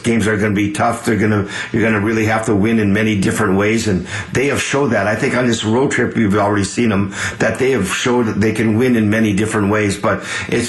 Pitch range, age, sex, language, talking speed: 105-120 Hz, 50-69, male, English, 280 wpm